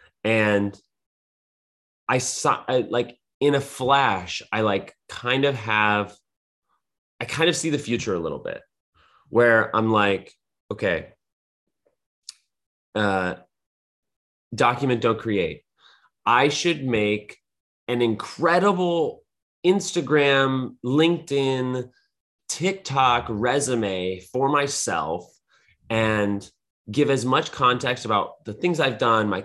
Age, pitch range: 30-49, 105-135 Hz